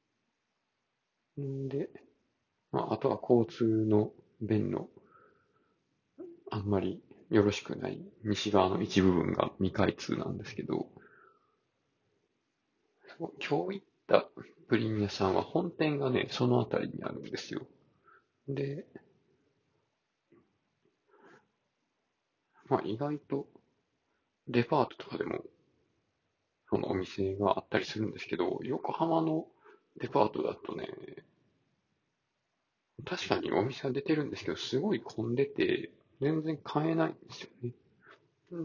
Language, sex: Japanese, male